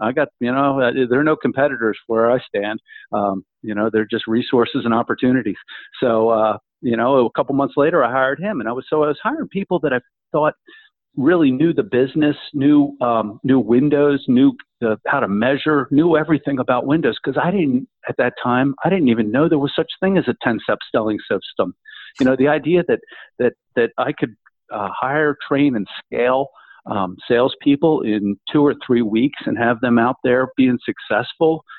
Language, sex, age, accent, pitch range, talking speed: English, male, 50-69, American, 115-150 Hz, 200 wpm